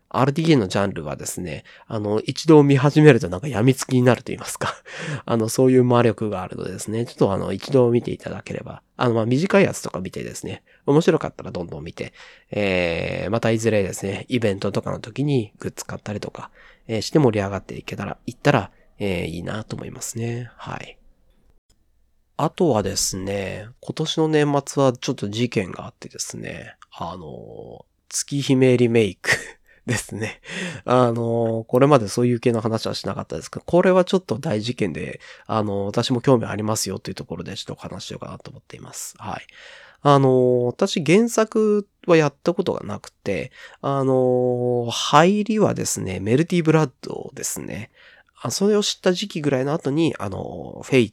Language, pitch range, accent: Japanese, 110-150 Hz, native